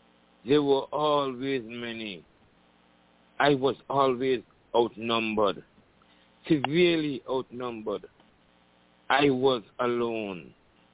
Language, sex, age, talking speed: English, male, 60-79, 70 wpm